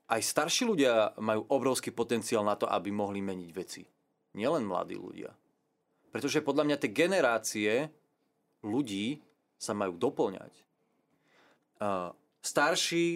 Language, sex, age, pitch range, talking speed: Slovak, male, 30-49, 100-135 Hz, 115 wpm